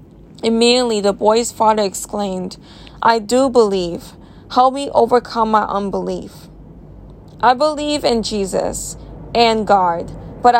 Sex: female